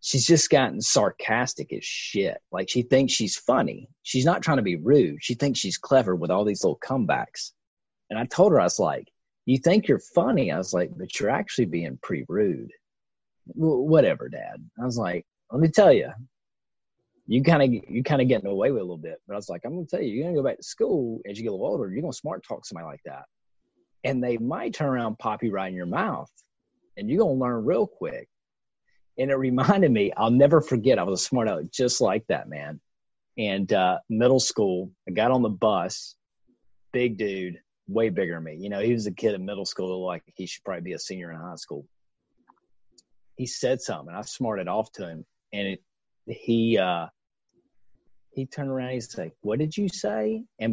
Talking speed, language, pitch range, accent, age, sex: 220 wpm, English, 100-135 Hz, American, 30-49, male